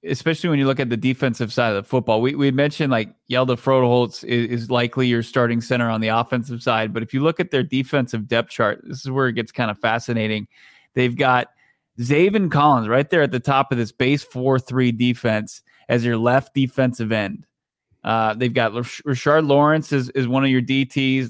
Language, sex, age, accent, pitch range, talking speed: English, male, 20-39, American, 120-135 Hz, 210 wpm